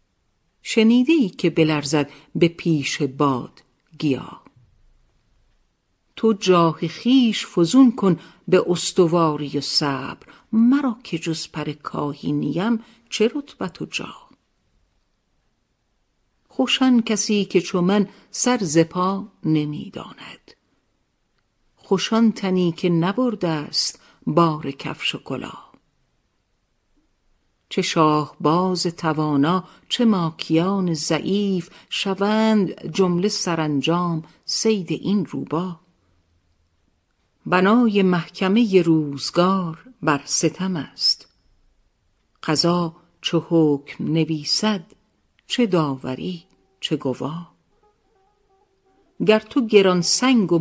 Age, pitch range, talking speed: 50-69, 155-210 Hz, 85 wpm